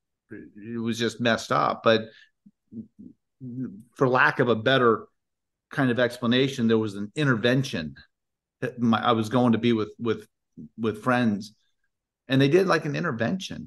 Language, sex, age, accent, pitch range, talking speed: English, male, 40-59, American, 115-140 Hz, 150 wpm